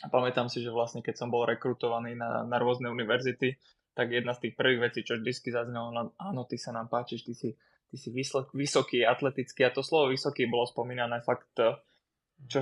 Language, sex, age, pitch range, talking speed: Czech, male, 20-39, 120-125 Hz, 200 wpm